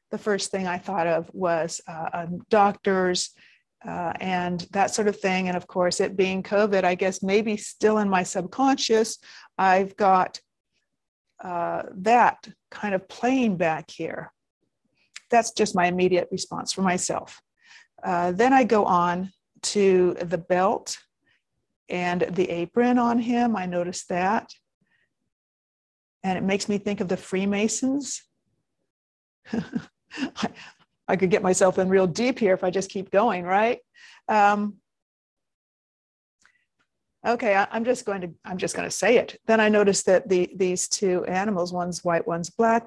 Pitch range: 180-215 Hz